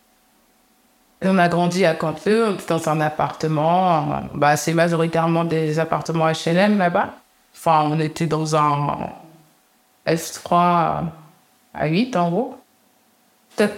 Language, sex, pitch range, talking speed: French, female, 165-205 Hz, 120 wpm